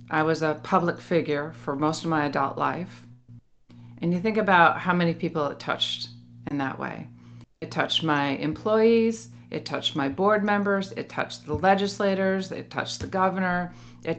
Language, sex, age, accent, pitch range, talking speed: English, female, 40-59, American, 140-190 Hz, 175 wpm